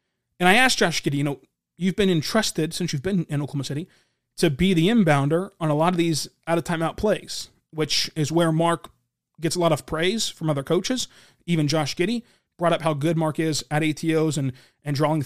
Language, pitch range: English, 150-190 Hz